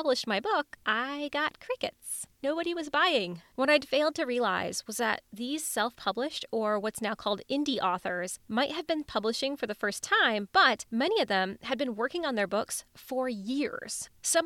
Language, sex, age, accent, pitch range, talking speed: English, female, 20-39, American, 205-270 Hz, 185 wpm